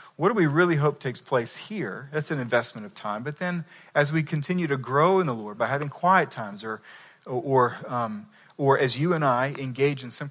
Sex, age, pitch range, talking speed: male, 40-59, 125-170 Hz, 210 wpm